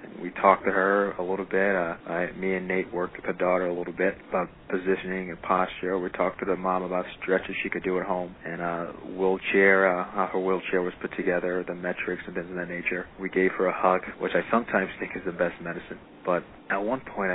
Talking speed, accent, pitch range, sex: 230 wpm, American, 90-95 Hz, male